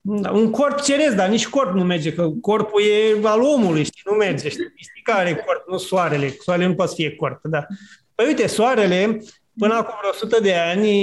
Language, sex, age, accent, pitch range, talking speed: Romanian, male, 30-49, native, 165-210 Hz, 210 wpm